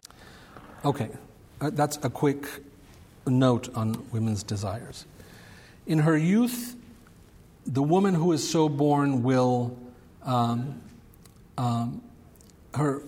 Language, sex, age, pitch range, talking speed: English, male, 50-69, 120-145 Hz, 100 wpm